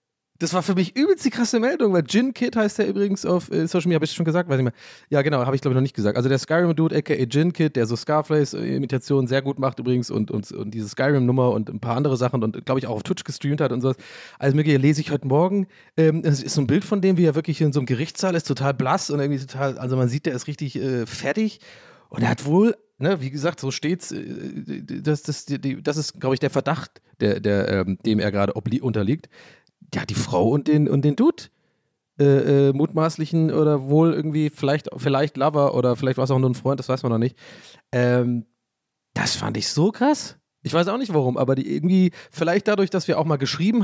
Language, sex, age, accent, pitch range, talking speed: German, male, 30-49, German, 130-165 Hz, 250 wpm